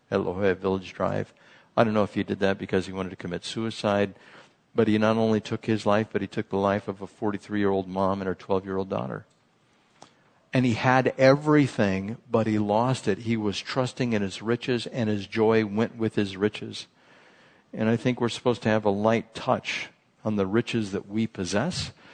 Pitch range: 105-145 Hz